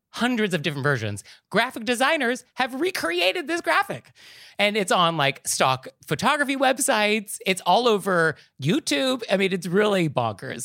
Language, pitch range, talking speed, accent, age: English, 150-245 Hz, 145 wpm, American, 30-49